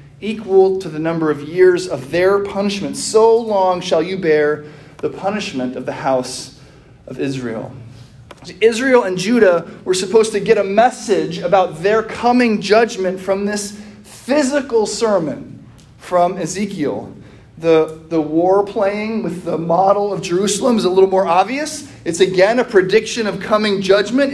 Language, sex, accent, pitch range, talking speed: English, male, American, 150-210 Hz, 150 wpm